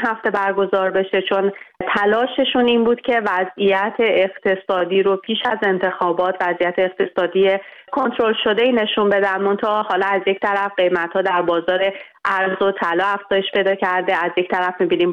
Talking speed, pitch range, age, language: 160 wpm, 180-210 Hz, 30-49, Persian